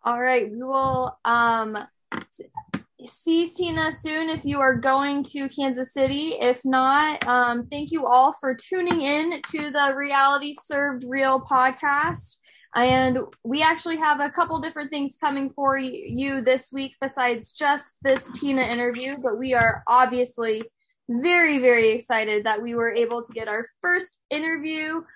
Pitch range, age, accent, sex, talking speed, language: 240-295 Hz, 10-29, American, female, 155 wpm, English